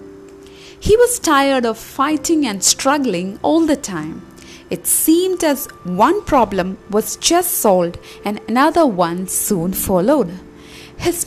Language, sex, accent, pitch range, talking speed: Malayalam, female, native, 195-330 Hz, 130 wpm